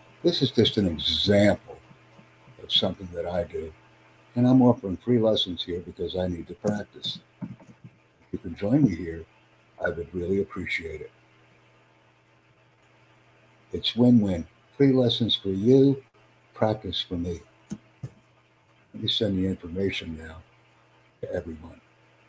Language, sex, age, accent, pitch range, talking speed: English, male, 60-79, American, 90-115 Hz, 130 wpm